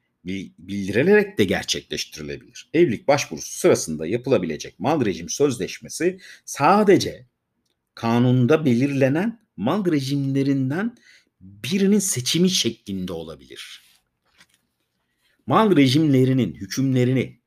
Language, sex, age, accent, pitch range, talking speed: Turkish, male, 50-69, native, 100-135 Hz, 75 wpm